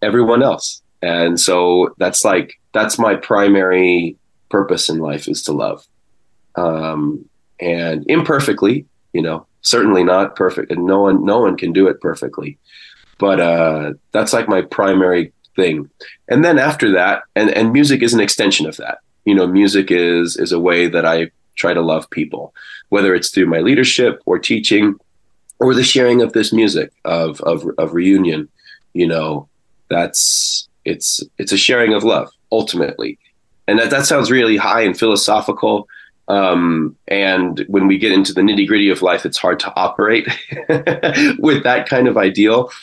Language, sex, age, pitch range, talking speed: English, male, 30-49, 80-105 Hz, 165 wpm